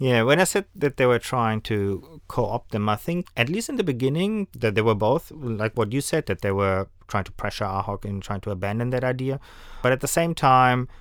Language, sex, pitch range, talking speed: English, male, 100-125 Hz, 240 wpm